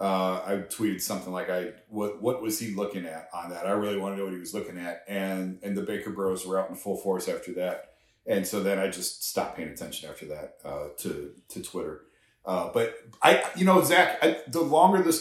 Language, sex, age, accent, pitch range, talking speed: English, male, 40-59, American, 100-160 Hz, 235 wpm